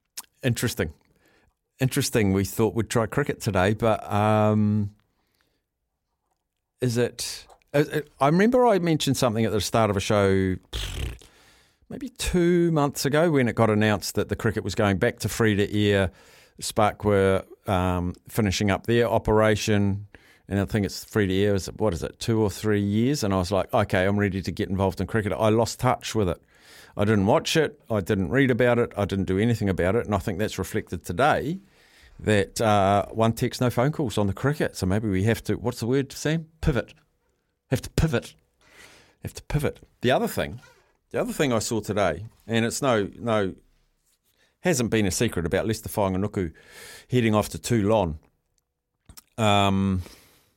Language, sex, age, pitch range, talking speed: English, male, 50-69, 100-120 Hz, 175 wpm